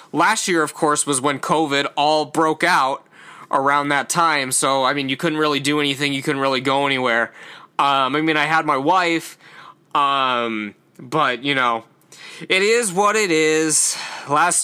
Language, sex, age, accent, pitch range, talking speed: English, male, 20-39, American, 140-170 Hz, 175 wpm